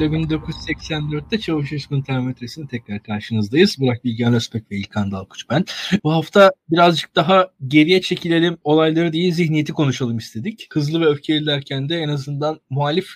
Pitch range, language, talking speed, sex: 130-170 Hz, Turkish, 140 wpm, male